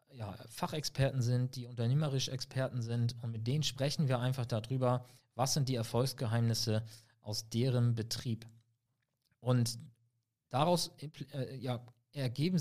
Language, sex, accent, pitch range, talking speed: German, male, German, 115-135 Hz, 125 wpm